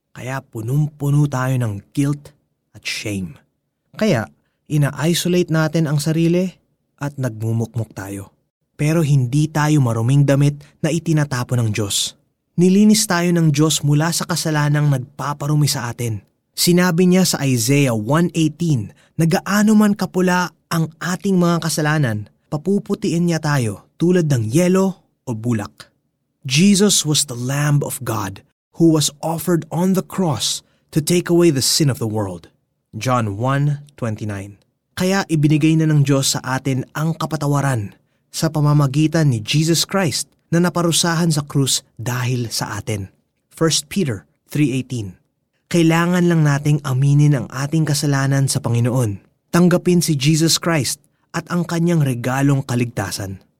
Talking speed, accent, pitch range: 130 wpm, native, 130-170 Hz